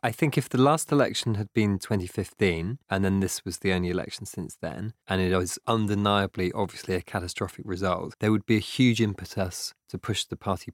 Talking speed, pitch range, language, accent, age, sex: 200 wpm, 90-105 Hz, English, British, 20-39, male